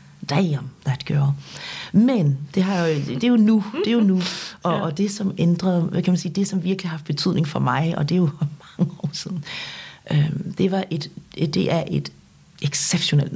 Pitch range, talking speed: 150-190 Hz, 195 wpm